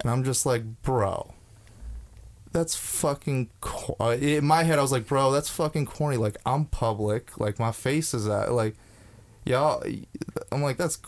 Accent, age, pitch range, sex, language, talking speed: American, 20-39, 100-135 Hz, male, English, 170 wpm